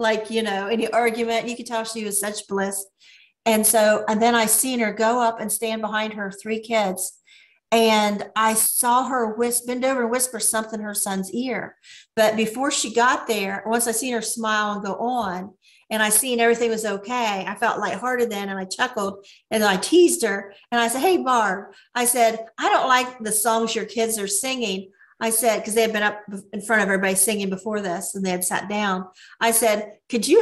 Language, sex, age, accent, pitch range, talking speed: English, female, 40-59, American, 210-240 Hz, 215 wpm